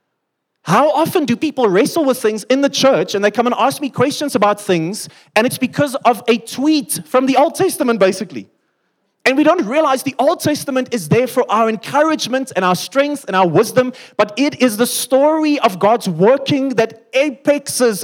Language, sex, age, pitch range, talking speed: English, male, 30-49, 215-275 Hz, 195 wpm